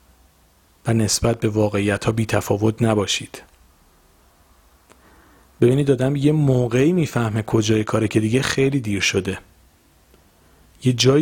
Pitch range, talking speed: 100-150 Hz, 125 wpm